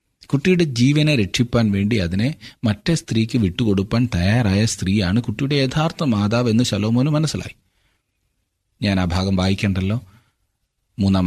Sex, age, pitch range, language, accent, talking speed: male, 30-49, 90-120 Hz, Malayalam, native, 110 wpm